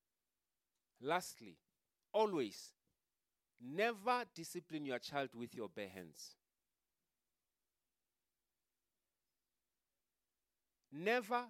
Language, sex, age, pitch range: English, male, 40-59, 95-160 Hz